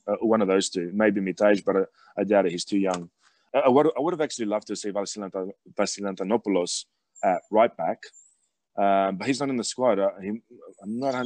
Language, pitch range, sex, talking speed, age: English, 95-105 Hz, male, 210 wpm, 20-39